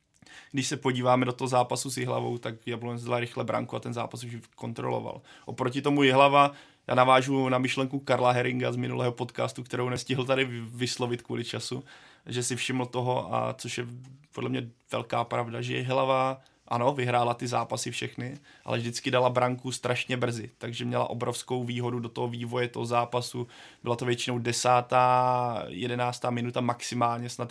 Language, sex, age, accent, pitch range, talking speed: Czech, male, 20-39, native, 120-125 Hz, 170 wpm